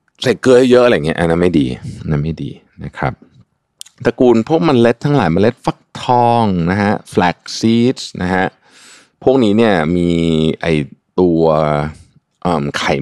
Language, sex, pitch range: Thai, male, 75-110 Hz